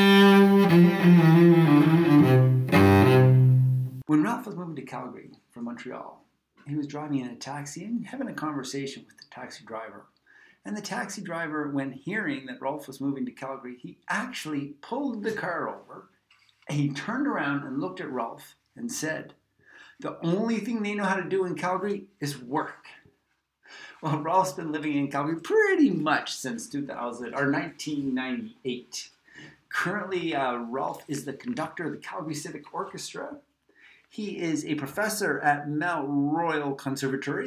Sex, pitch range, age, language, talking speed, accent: male, 140-210 Hz, 50-69, English, 150 wpm, American